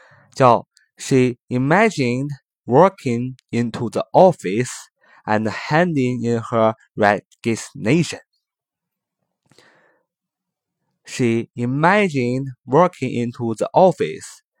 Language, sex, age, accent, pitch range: Chinese, male, 20-39, native, 105-150 Hz